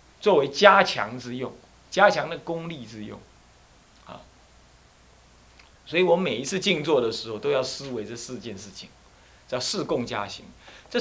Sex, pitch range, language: male, 95-160 Hz, Chinese